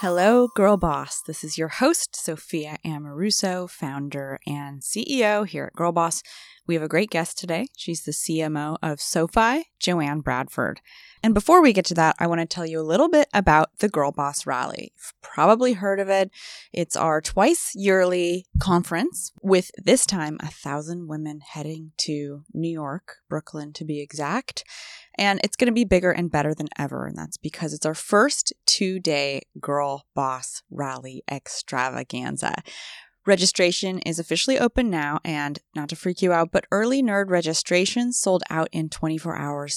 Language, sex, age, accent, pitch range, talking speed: English, female, 20-39, American, 150-205 Hz, 170 wpm